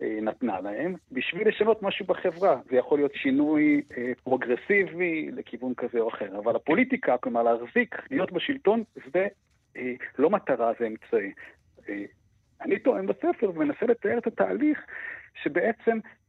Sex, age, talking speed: male, 50-69, 135 wpm